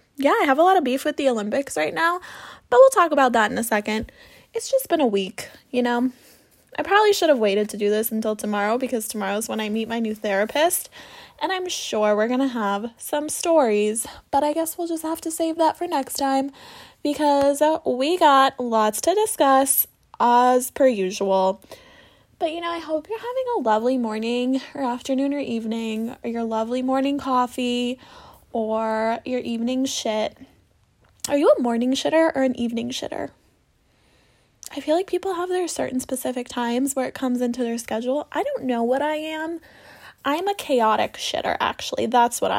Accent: American